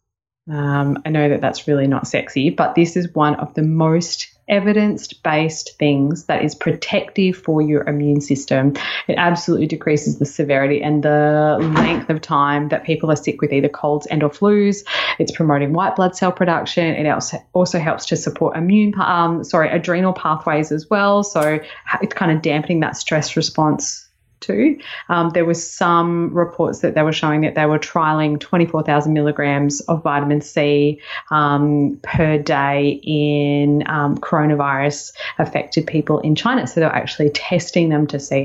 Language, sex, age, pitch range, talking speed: English, female, 20-39, 145-175 Hz, 165 wpm